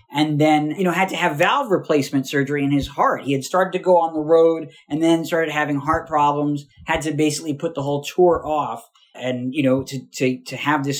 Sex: male